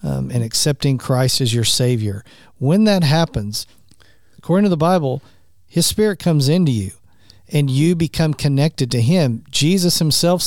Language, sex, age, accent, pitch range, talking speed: English, male, 50-69, American, 130-160 Hz, 155 wpm